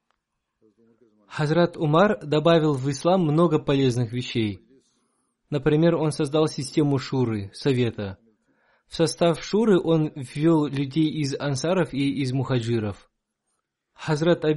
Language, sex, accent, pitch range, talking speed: Russian, male, native, 125-160 Hz, 105 wpm